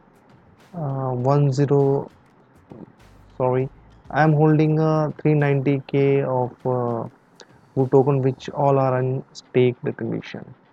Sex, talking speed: male, 115 wpm